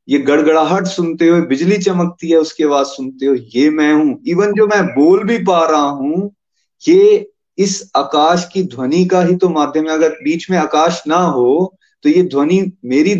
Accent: native